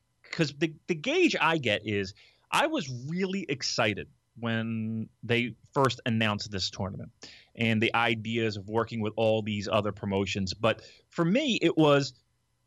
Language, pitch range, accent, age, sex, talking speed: English, 110-160 Hz, American, 30-49, male, 150 wpm